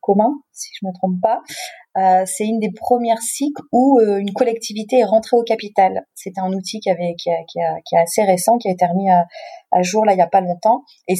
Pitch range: 185-230 Hz